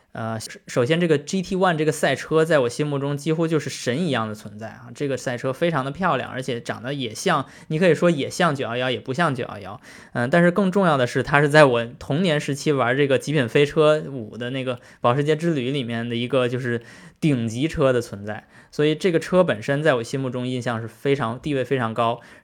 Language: Chinese